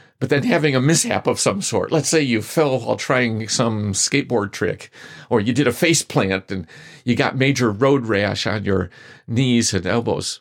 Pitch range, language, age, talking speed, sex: 120-165 Hz, English, 50-69, 195 wpm, male